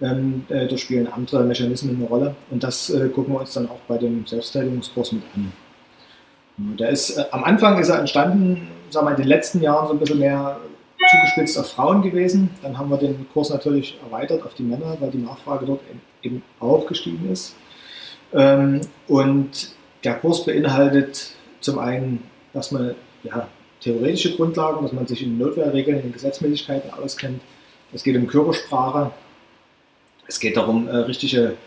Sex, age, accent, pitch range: male, 40-59, German, 125-150 Hz